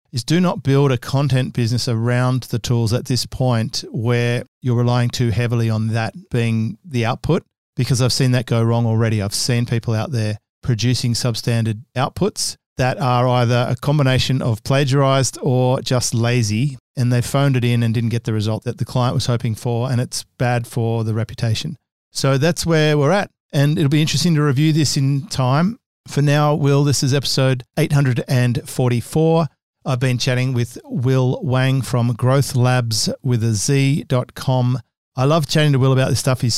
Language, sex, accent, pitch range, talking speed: English, male, Australian, 120-140 Hz, 185 wpm